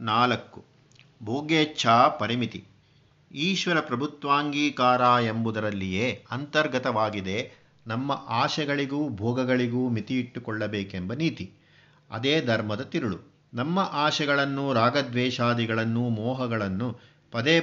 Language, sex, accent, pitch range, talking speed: Kannada, male, native, 120-150 Hz, 70 wpm